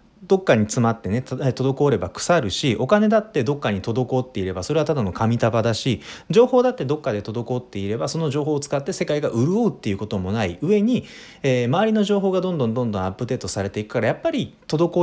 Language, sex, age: Japanese, male, 30-49